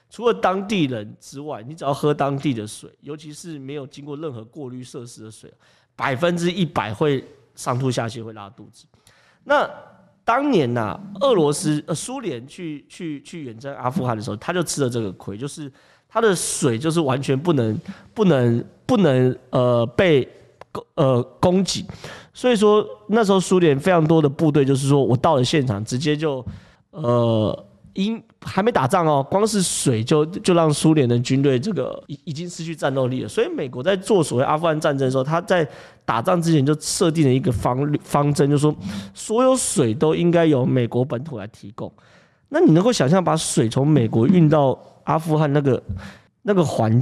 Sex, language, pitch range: male, Chinese, 125-170 Hz